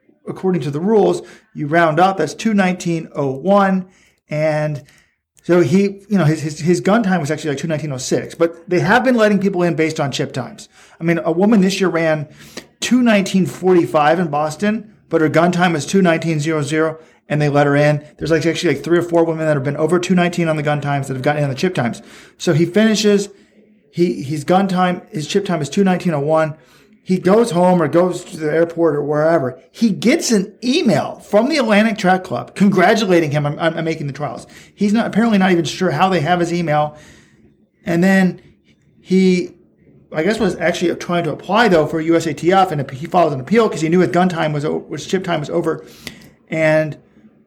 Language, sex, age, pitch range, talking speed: English, male, 40-59, 155-190 Hz, 225 wpm